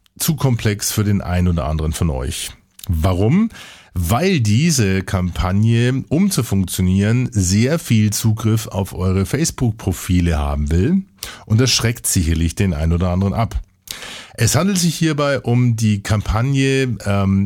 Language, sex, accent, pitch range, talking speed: German, male, German, 95-125 Hz, 140 wpm